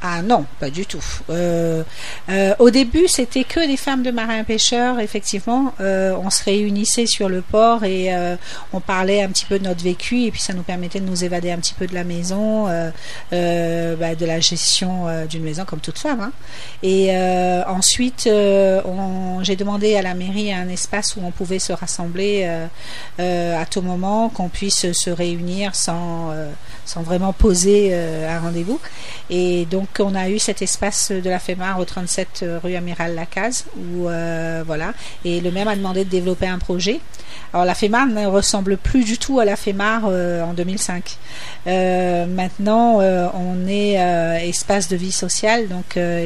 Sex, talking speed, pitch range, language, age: female, 190 wpm, 175-205 Hz, French, 40-59